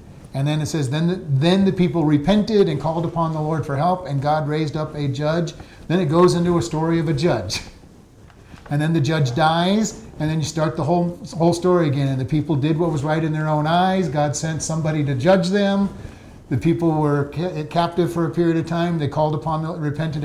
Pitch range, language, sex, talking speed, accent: 140-170 Hz, English, male, 230 wpm, American